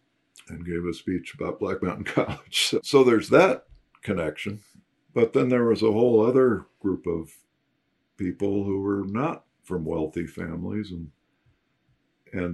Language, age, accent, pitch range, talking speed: English, 50-69, American, 80-100 Hz, 150 wpm